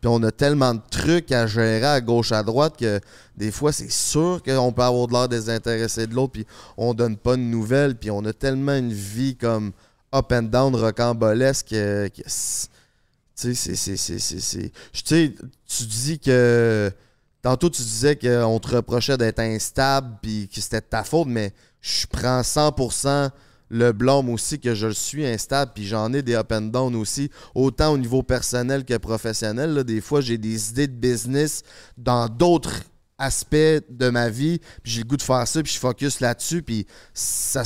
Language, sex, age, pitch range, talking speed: French, male, 20-39, 115-140 Hz, 195 wpm